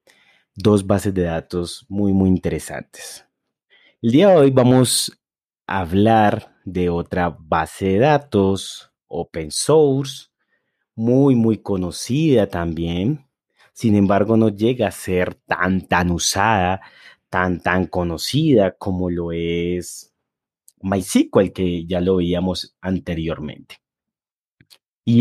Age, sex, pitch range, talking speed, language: 30-49, male, 90-110 Hz, 110 wpm, Spanish